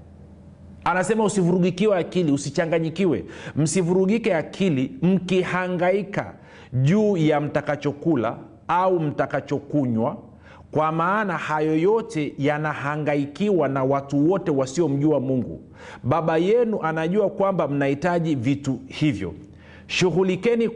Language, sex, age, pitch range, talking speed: Swahili, male, 50-69, 130-185 Hz, 85 wpm